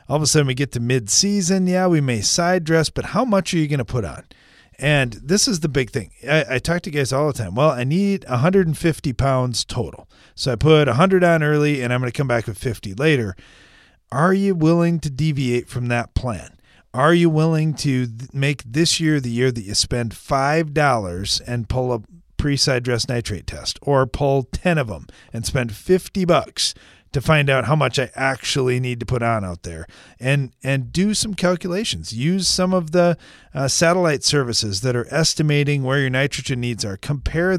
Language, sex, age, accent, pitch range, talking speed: English, male, 40-59, American, 125-165 Hz, 205 wpm